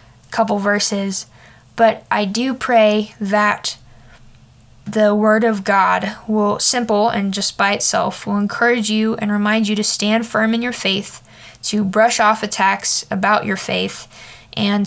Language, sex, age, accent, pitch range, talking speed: English, female, 10-29, American, 195-220 Hz, 150 wpm